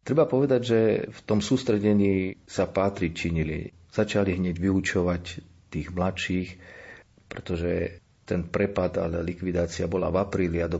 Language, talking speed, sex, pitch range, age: Slovak, 135 wpm, male, 85-100 Hz, 40-59